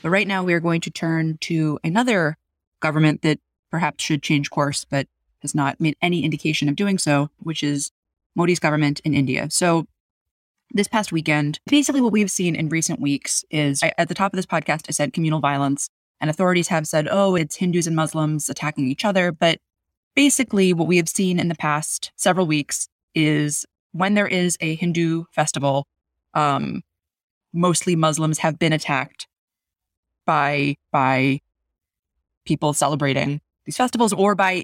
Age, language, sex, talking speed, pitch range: 20-39, English, female, 170 wpm, 145-180 Hz